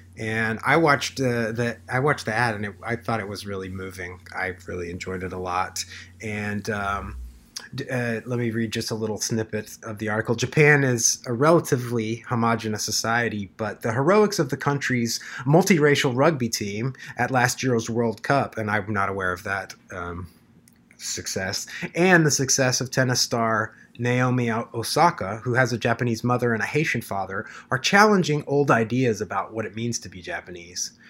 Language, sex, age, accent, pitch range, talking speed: English, male, 30-49, American, 110-130 Hz, 180 wpm